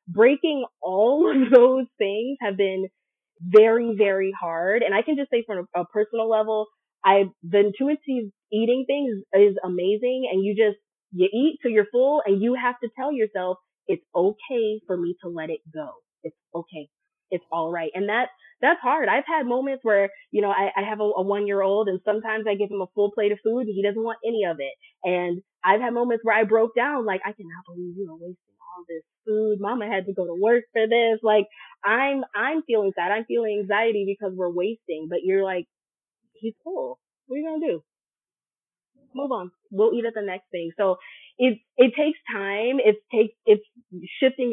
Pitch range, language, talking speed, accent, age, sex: 185-230 Hz, English, 205 wpm, American, 20-39, female